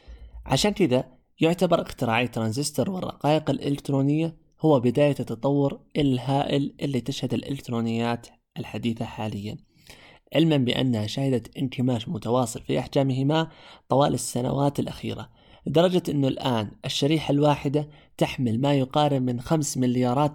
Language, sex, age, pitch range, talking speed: Arabic, male, 20-39, 120-155 Hz, 110 wpm